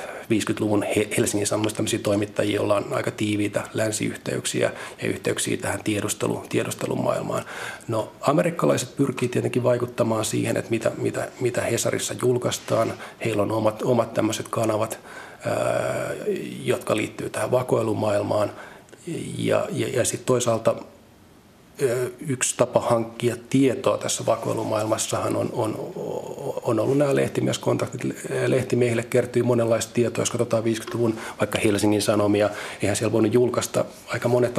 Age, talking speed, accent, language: 40-59, 120 wpm, native, Finnish